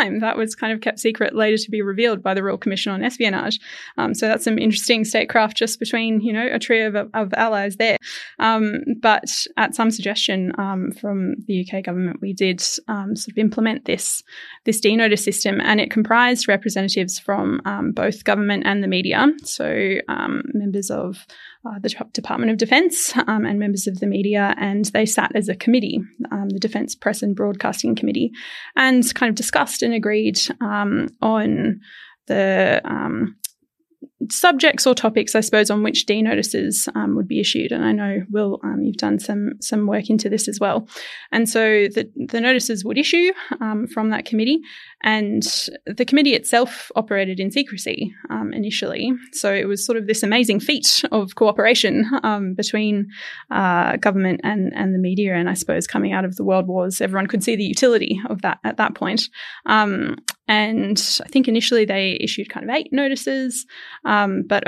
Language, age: English, 10-29